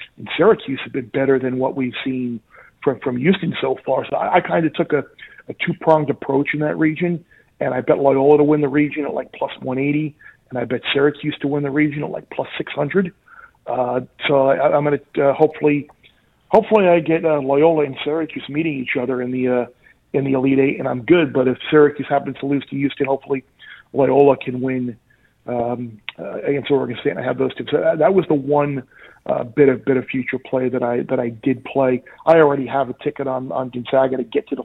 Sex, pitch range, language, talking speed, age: male, 130-150 Hz, English, 235 wpm, 40-59